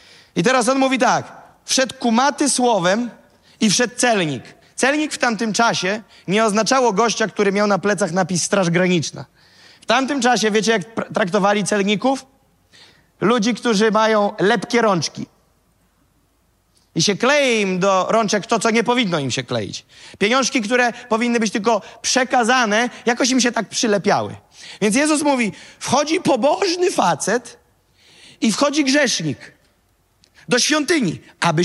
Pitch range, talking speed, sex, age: 170-245 Hz, 140 wpm, male, 30-49